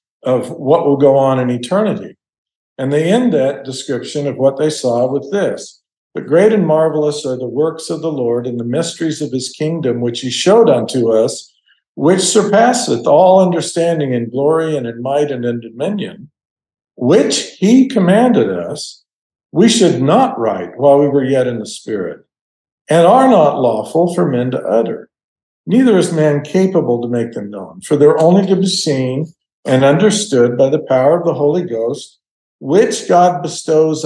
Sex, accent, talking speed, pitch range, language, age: male, American, 175 wpm, 125-170 Hz, English, 50-69